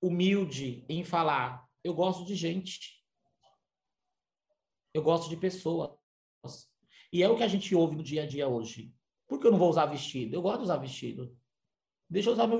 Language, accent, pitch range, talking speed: Portuguese, Brazilian, 155-200 Hz, 185 wpm